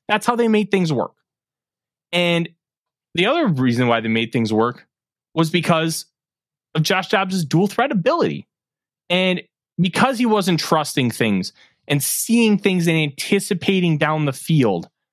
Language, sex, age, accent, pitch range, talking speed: English, male, 20-39, American, 135-180 Hz, 145 wpm